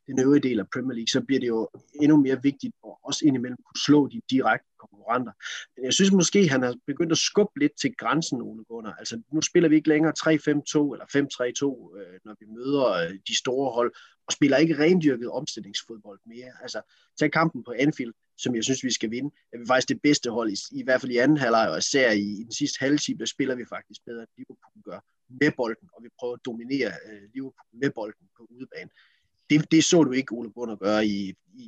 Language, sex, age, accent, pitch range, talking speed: Danish, male, 30-49, native, 115-150 Hz, 220 wpm